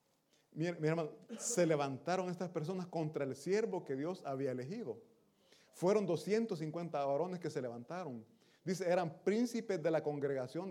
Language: Italian